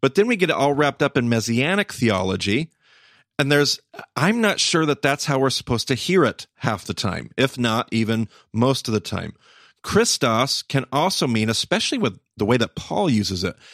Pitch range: 110-145 Hz